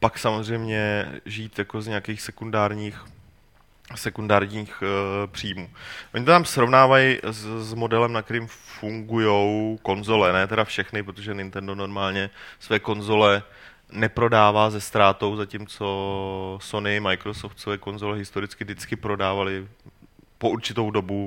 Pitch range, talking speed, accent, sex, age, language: 100-115 Hz, 120 wpm, native, male, 20-39, Czech